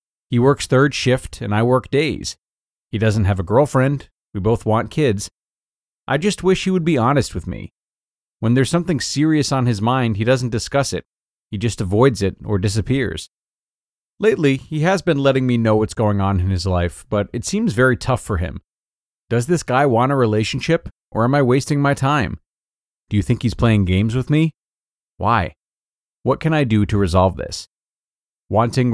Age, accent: 30-49, American